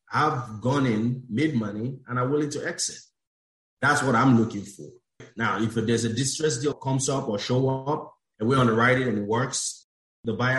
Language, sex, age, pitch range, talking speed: English, male, 30-49, 110-130 Hz, 205 wpm